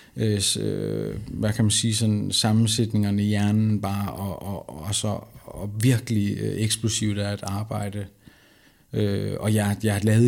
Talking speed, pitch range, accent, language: 145 wpm, 110-125 Hz, native, Danish